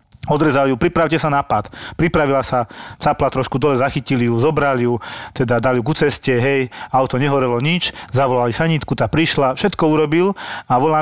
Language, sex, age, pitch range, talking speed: Slovak, male, 40-59, 125-160 Hz, 175 wpm